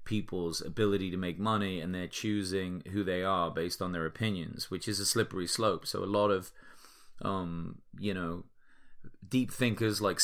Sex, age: male, 30-49